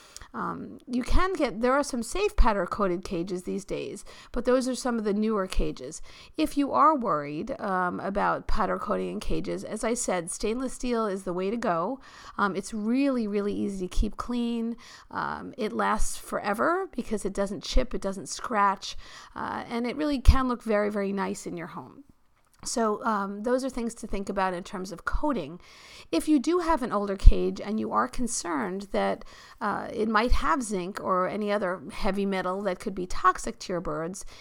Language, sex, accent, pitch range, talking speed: English, female, American, 190-245 Hz, 195 wpm